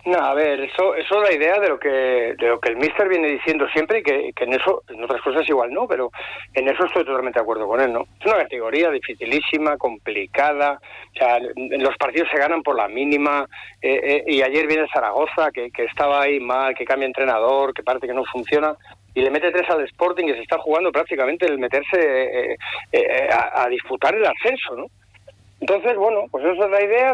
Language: Spanish